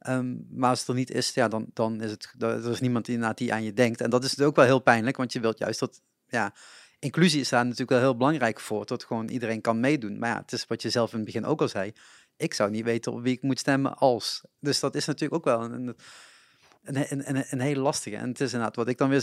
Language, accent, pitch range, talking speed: Dutch, Dutch, 115-135 Hz, 290 wpm